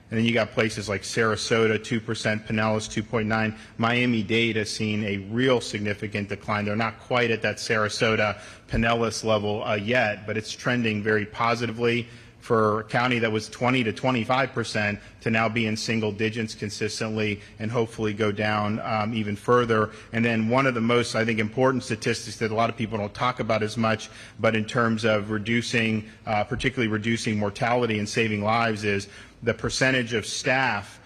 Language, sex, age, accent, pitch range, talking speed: English, male, 40-59, American, 105-120 Hz, 180 wpm